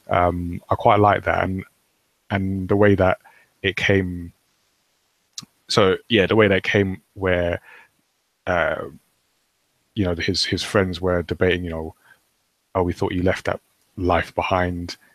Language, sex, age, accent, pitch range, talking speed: English, male, 20-39, British, 85-95 Hz, 150 wpm